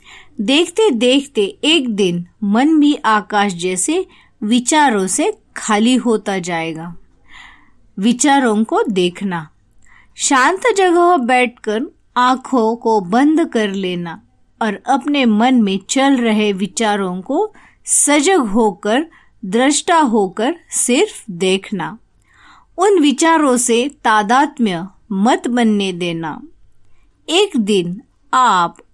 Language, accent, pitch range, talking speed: Marathi, native, 200-280 Hz, 100 wpm